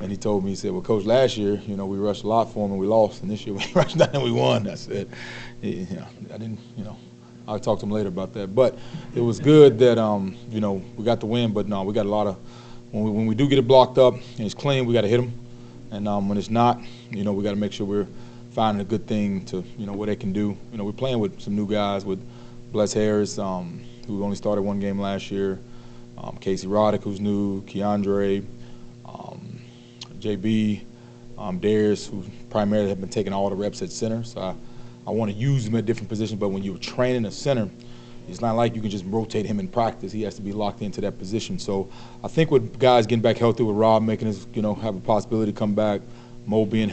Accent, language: American, English